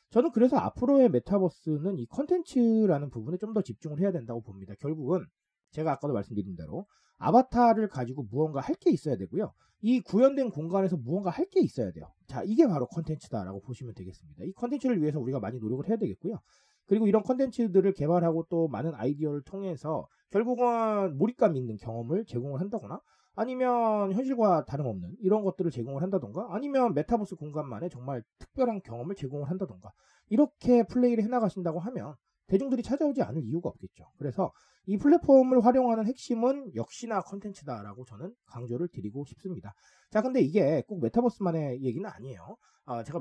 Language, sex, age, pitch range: Korean, male, 30-49, 145-230 Hz